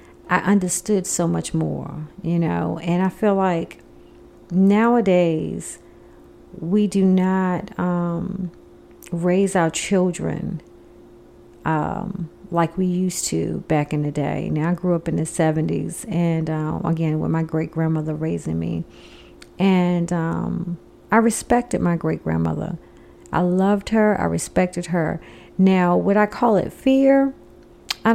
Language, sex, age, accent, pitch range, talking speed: English, female, 40-59, American, 160-210 Hz, 135 wpm